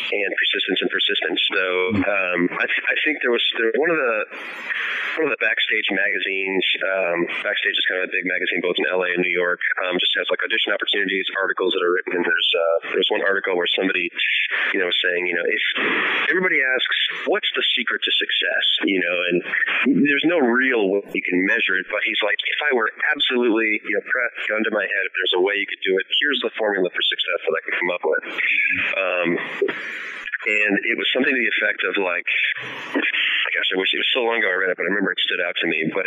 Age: 30-49